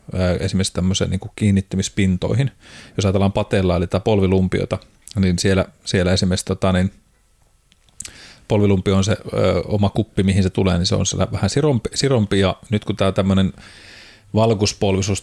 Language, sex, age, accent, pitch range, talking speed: Finnish, male, 30-49, native, 95-105 Hz, 145 wpm